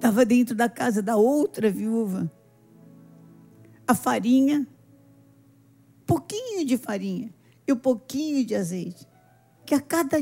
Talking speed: 115 wpm